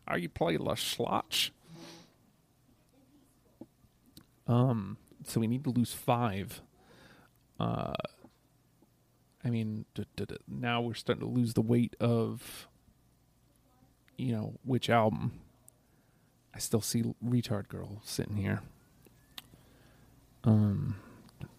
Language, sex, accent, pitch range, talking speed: English, male, American, 115-130 Hz, 110 wpm